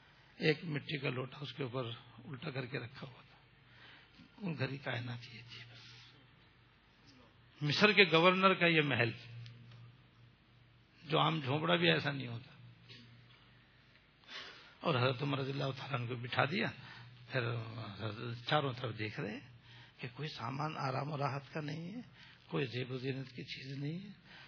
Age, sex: 60-79, male